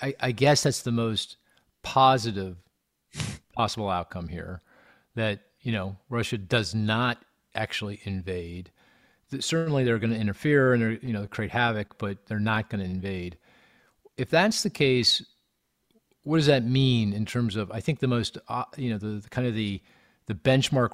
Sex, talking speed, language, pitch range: male, 165 wpm, English, 105-130 Hz